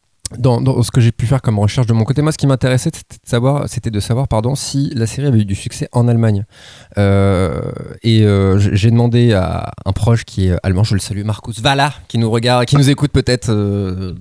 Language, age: French, 20-39